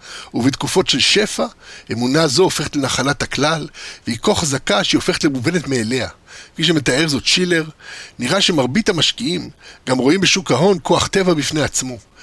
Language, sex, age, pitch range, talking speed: Hebrew, male, 50-69, 145-185 Hz, 145 wpm